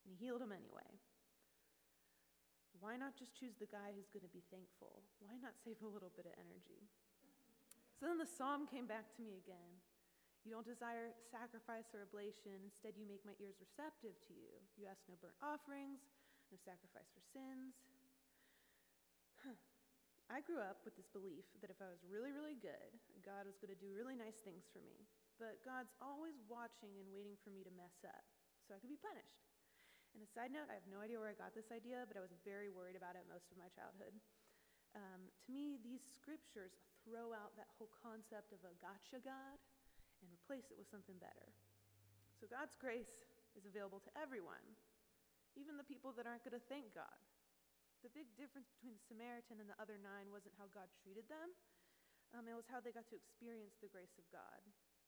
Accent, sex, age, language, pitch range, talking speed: American, female, 20-39, English, 195-250 Hz, 200 wpm